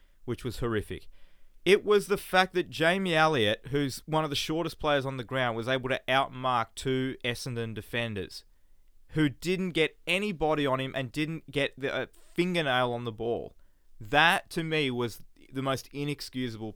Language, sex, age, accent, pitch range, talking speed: English, male, 20-39, Australian, 115-160 Hz, 170 wpm